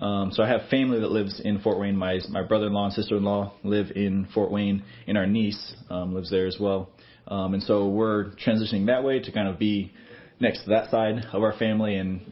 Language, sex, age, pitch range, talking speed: English, male, 20-39, 95-115 Hz, 225 wpm